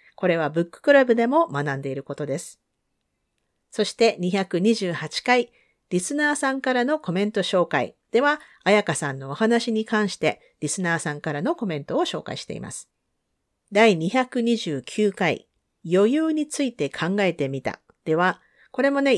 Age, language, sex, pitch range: 50-69, Japanese, female, 170-250 Hz